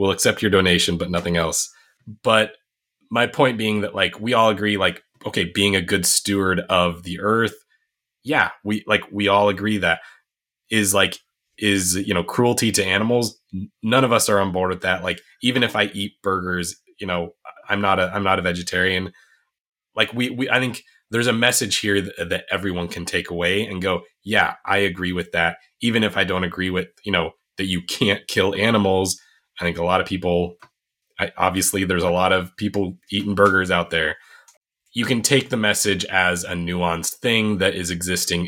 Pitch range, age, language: 90-105 Hz, 20-39, English